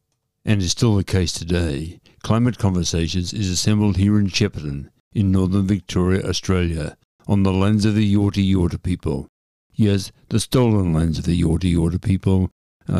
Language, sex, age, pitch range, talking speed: English, male, 60-79, 85-105 Hz, 160 wpm